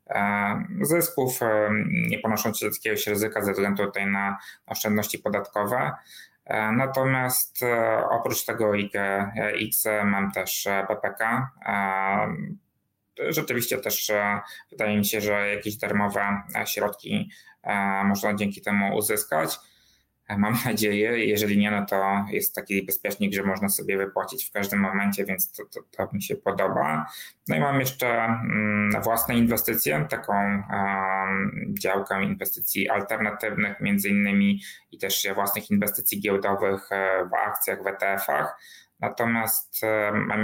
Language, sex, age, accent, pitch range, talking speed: Polish, male, 20-39, native, 100-110 Hz, 120 wpm